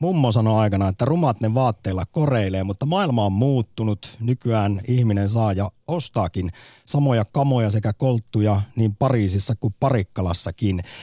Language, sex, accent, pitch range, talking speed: Finnish, male, native, 95-125 Hz, 135 wpm